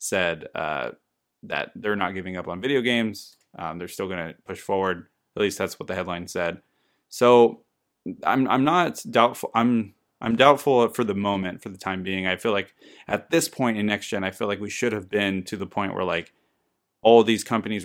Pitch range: 95-115 Hz